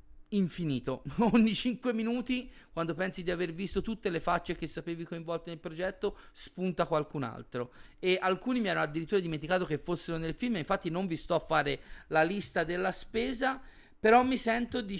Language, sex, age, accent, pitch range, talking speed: Italian, male, 30-49, native, 140-185 Hz, 175 wpm